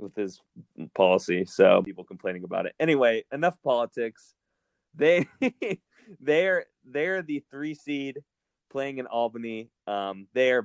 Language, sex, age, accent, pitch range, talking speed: English, male, 20-39, American, 100-115 Hz, 125 wpm